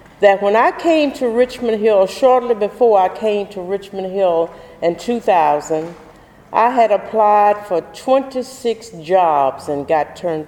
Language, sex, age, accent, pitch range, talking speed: English, female, 50-69, American, 200-255 Hz, 145 wpm